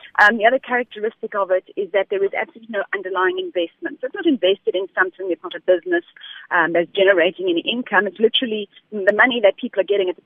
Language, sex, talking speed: English, female, 230 wpm